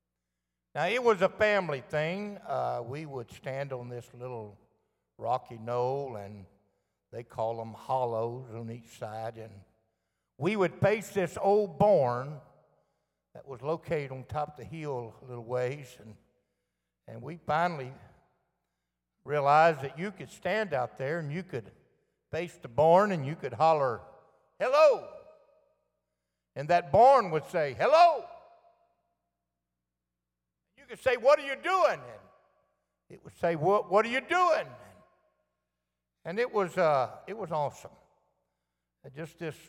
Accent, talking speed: American, 140 wpm